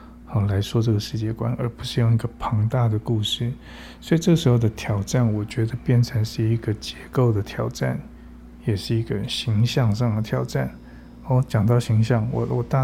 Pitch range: 110-125 Hz